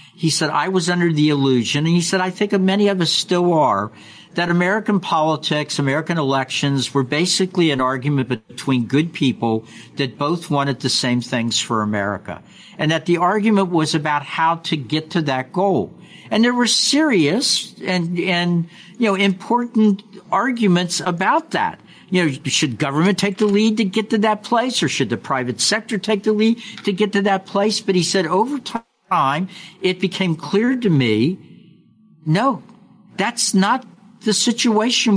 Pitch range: 145-210 Hz